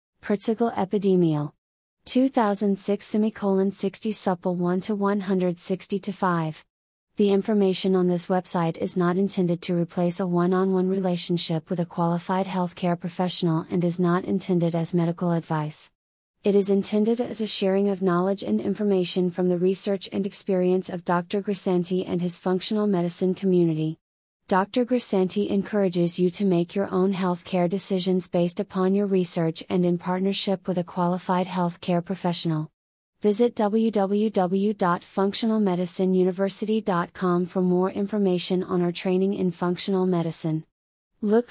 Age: 30-49